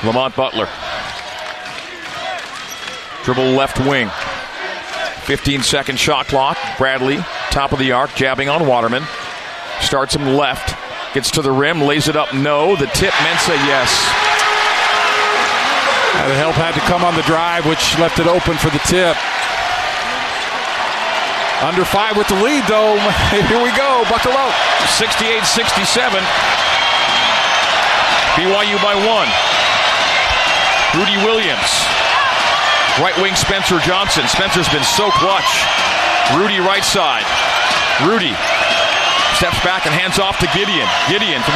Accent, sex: American, male